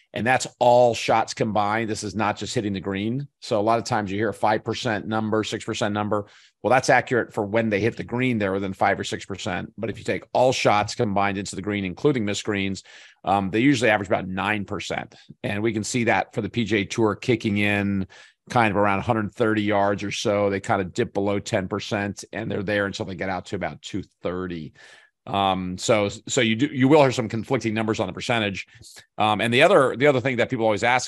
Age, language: 40-59, English